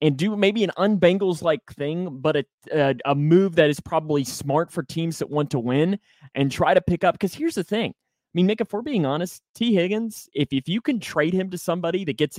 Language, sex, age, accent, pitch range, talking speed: English, male, 30-49, American, 145-195 Hz, 240 wpm